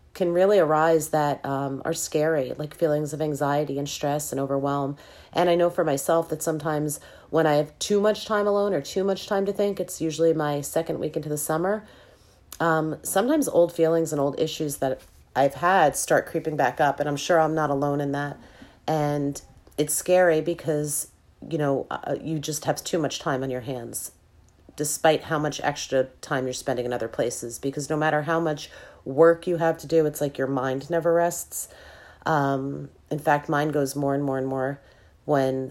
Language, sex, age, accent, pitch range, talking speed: English, female, 30-49, American, 140-160 Hz, 195 wpm